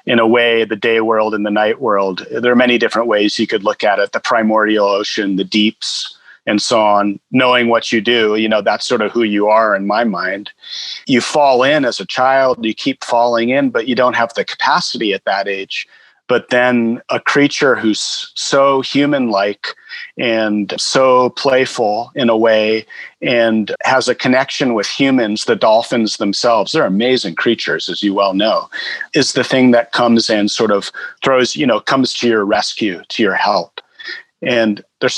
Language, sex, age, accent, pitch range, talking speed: English, male, 40-59, American, 110-130 Hz, 190 wpm